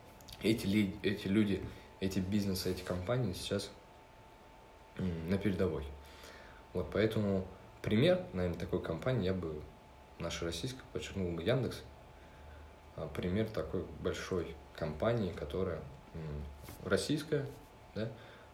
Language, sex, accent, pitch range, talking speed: Russian, male, native, 80-105 Hz, 95 wpm